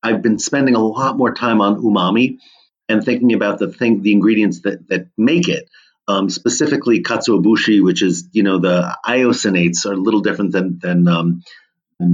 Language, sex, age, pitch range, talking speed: English, male, 40-59, 95-115 Hz, 185 wpm